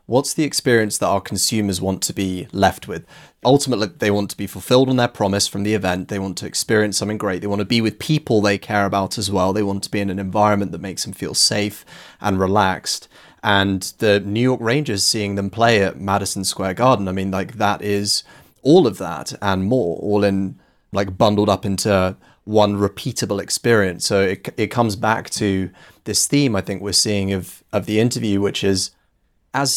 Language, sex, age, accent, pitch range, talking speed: English, male, 30-49, British, 100-125 Hz, 210 wpm